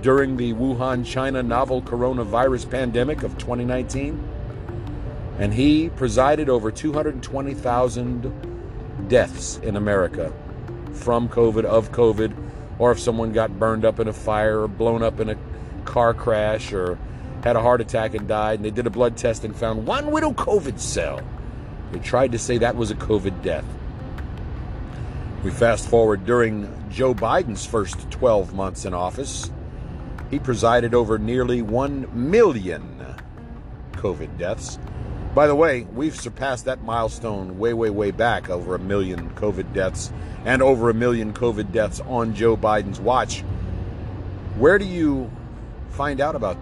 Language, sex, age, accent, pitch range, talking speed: English, male, 50-69, American, 105-125 Hz, 150 wpm